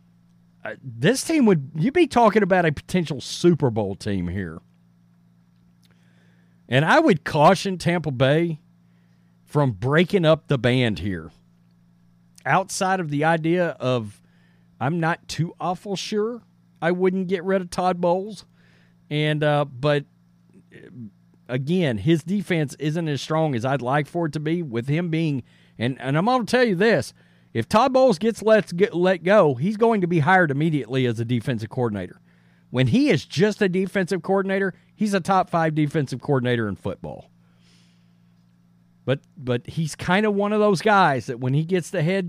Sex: male